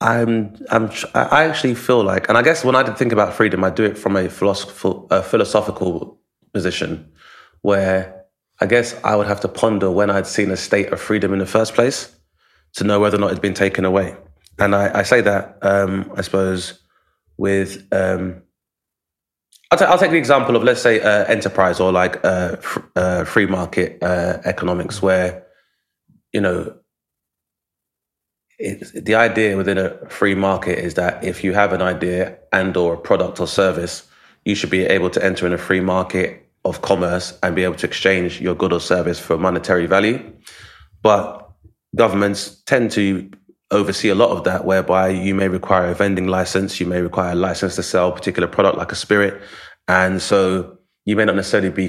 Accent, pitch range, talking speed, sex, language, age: British, 90-105 Hz, 195 wpm, male, English, 20-39